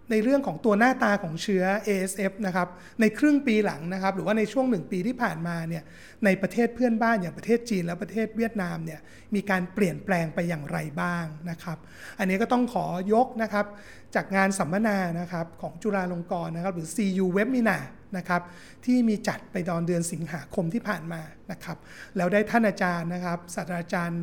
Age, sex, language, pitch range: 30-49, male, Thai, 175-220 Hz